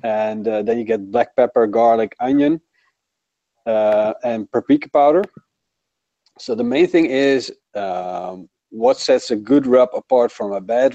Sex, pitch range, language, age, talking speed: male, 115-140 Hz, English, 40-59, 155 wpm